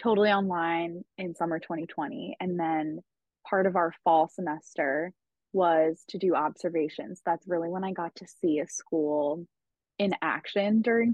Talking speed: 150 wpm